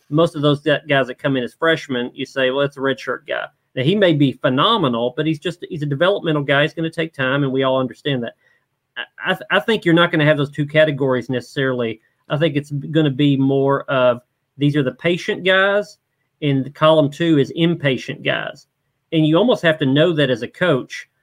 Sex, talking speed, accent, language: male, 230 wpm, American, English